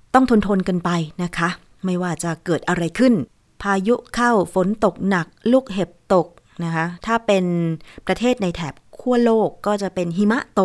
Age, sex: 20-39, female